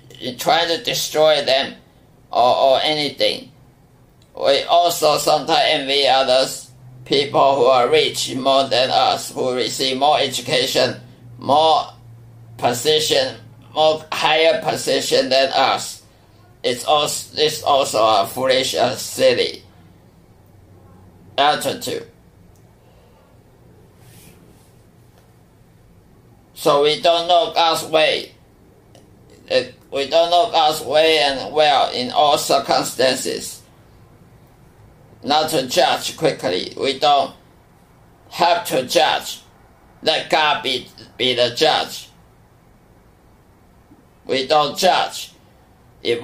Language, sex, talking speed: English, male, 100 wpm